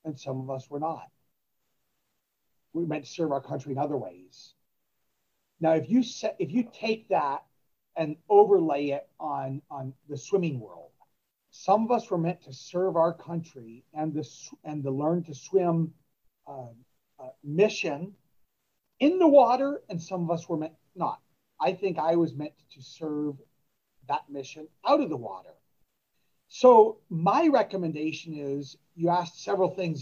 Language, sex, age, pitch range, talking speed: English, male, 40-59, 145-215 Hz, 165 wpm